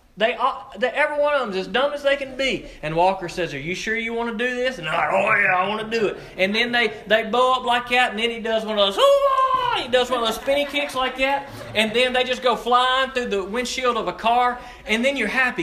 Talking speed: 295 wpm